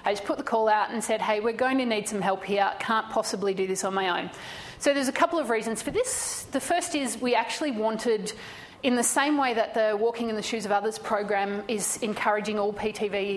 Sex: female